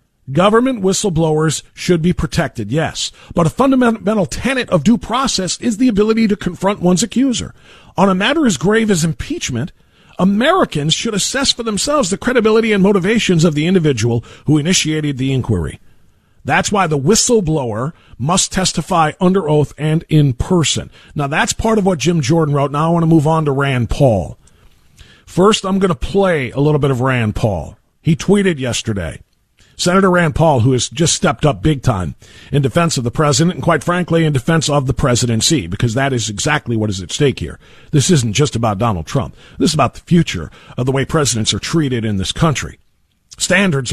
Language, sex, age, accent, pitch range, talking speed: English, male, 40-59, American, 130-190 Hz, 190 wpm